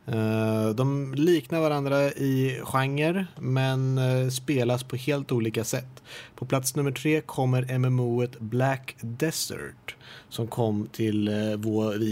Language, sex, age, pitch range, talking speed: Swedish, male, 30-49, 115-140 Hz, 115 wpm